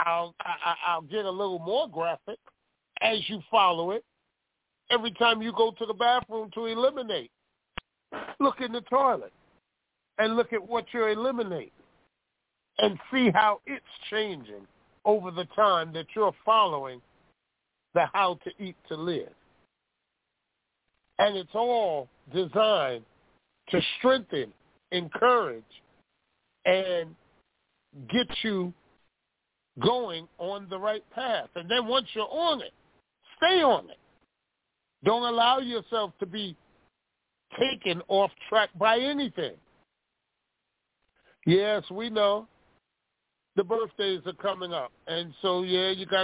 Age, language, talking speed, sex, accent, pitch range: 40-59, English, 120 wpm, male, American, 185-230 Hz